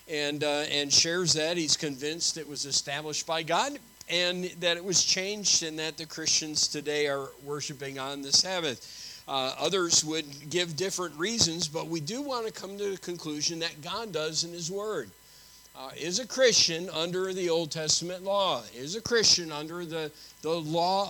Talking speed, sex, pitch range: 180 wpm, male, 150-185 Hz